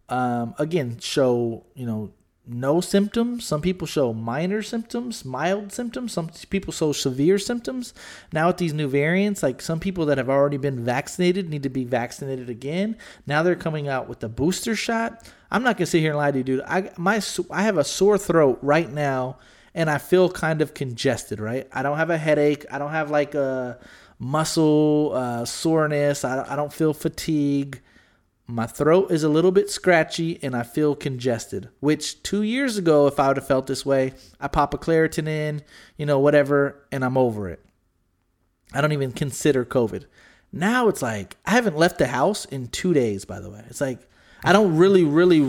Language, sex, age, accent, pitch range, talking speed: English, male, 30-49, American, 130-175 Hz, 195 wpm